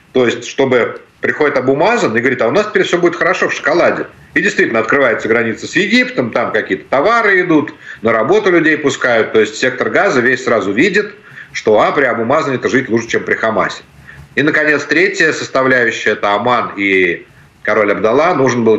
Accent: native